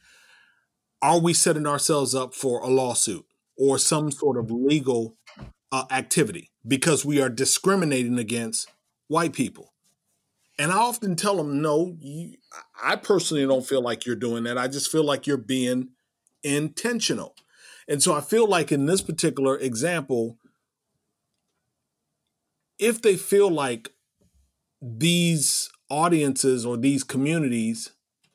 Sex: male